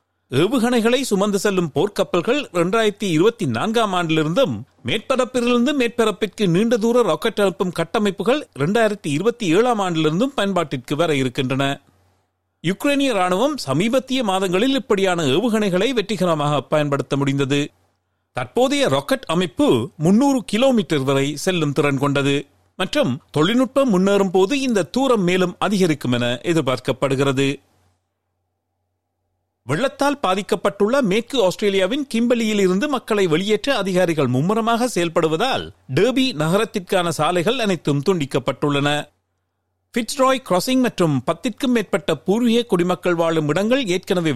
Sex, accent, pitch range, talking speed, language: male, native, 145-230 Hz, 95 wpm, Tamil